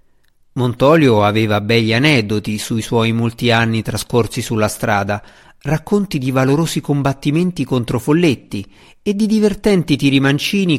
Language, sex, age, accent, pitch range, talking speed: Italian, male, 50-69, native, 110-150 Hz, 115 wpm